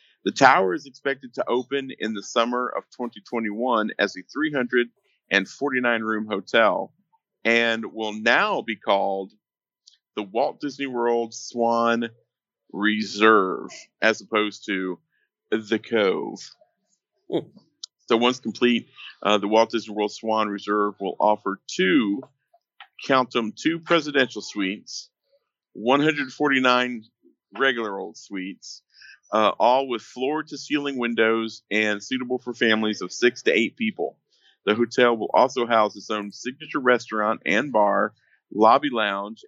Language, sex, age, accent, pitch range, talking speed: English, male, 40-59, American, 105-125 Hz, 125 wpm